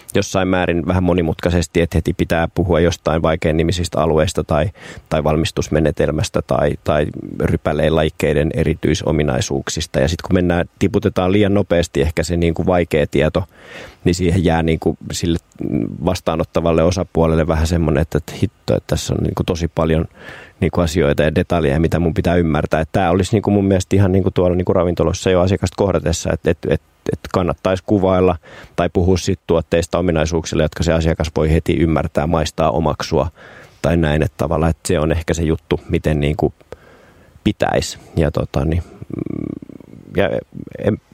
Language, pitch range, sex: Finnish, 80-95 Hz, male